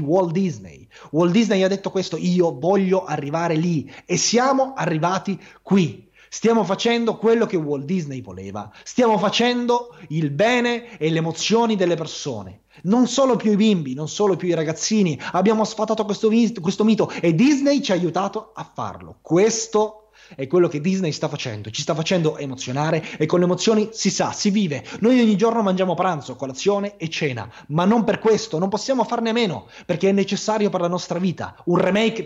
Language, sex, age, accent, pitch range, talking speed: Italian, male, 30-49, native, 155-210 Hz, 180 wpm